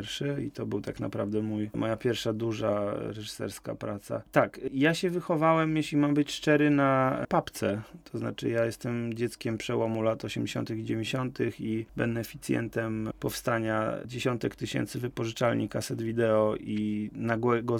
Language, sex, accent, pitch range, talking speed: Polish, male, native, 110-130 Hz, 140 wpm